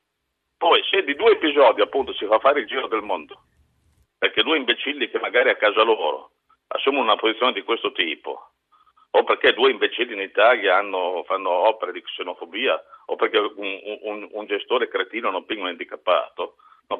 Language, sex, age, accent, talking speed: Italian, male, 50-69, native, 180 wpm